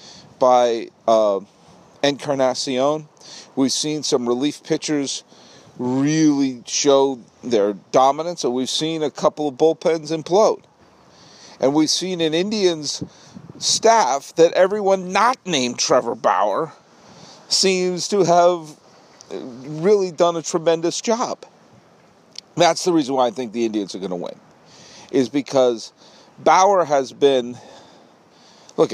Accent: American